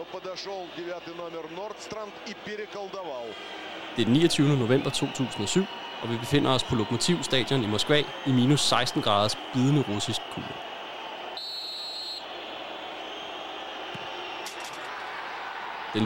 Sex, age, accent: male, 30-49, native